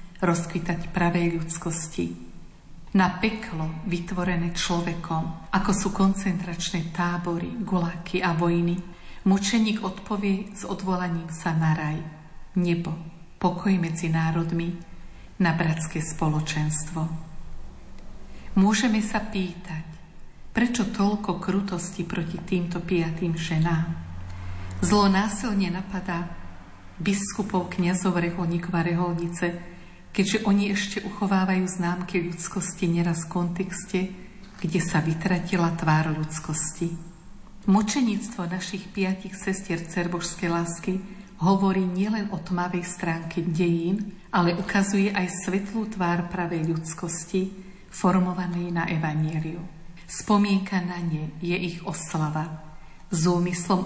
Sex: female